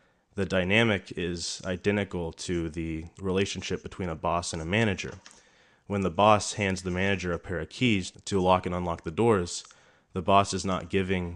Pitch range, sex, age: 85-95 Hz, male, 20-39